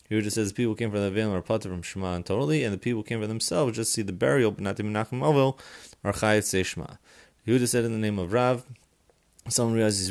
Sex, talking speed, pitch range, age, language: male, 245 wpm, 95-115 Hz, 30-49, English